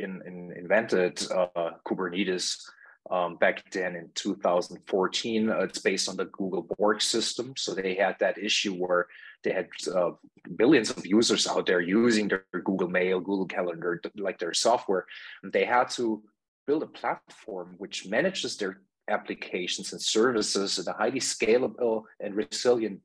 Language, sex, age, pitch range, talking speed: German, male, 30-49, 100-120 Hz, 155 wpm